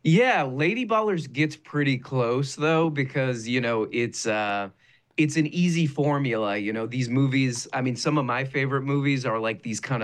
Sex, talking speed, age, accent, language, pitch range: male, 185 wpm, 30-49, American, English, 110-150 Hz